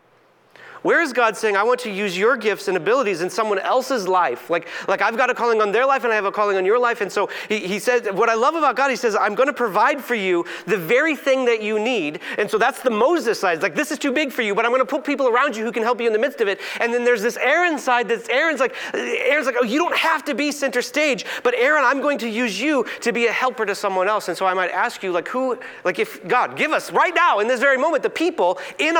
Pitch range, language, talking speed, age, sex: 205-300 Hz, English, 295 wpm, 30-49, male